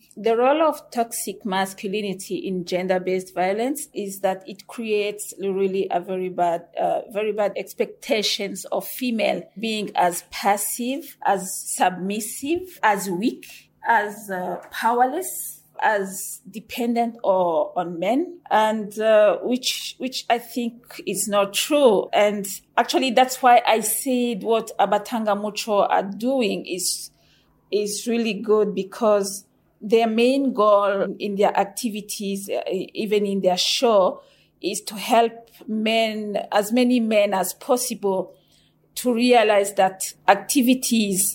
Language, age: English, 40-59